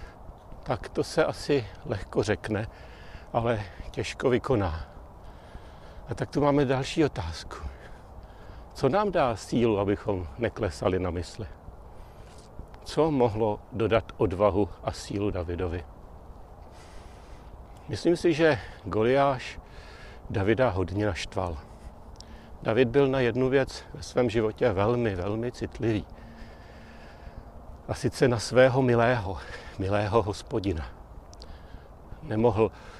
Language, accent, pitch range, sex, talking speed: Czech, native, 90-120 Hz, male, 100 wpm